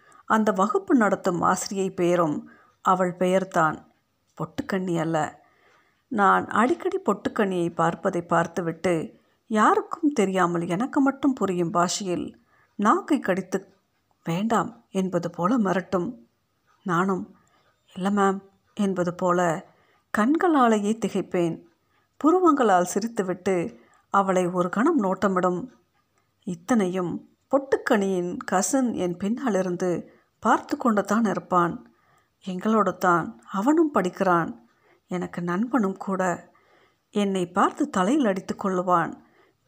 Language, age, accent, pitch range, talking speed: Tamil, 50-69, native, 180-245 Hz, 90 wpm